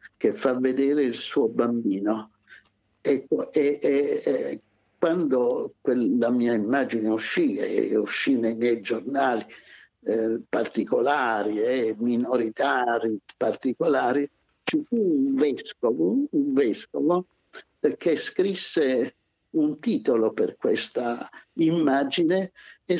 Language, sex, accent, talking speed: Italian, male, native, 110 wpm